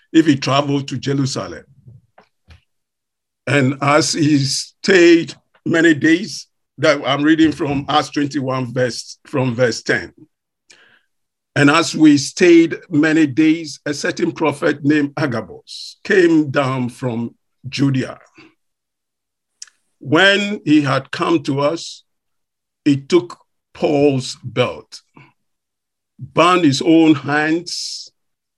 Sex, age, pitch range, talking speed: male, 50-69, 135-165 Hz, 105 wpm